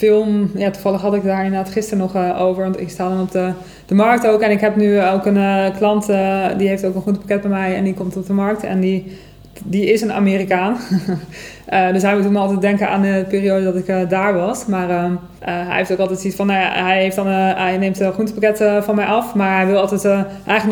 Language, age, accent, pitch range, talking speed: Dutch, 20-39, Dutch, 185-205 Hz, 265 wpm